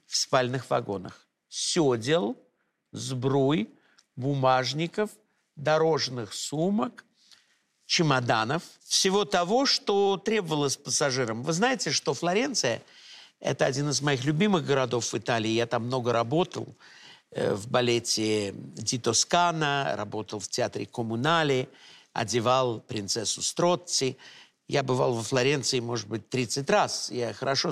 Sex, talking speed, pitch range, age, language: male, 115 wpm, 125-165 Hz, 50-69, Russian